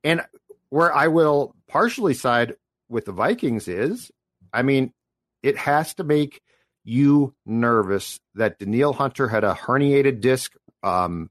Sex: male